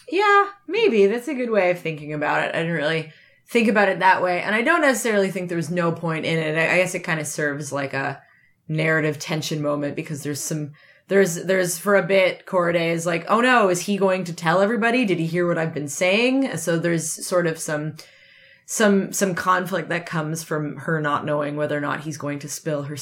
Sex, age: female, 20-39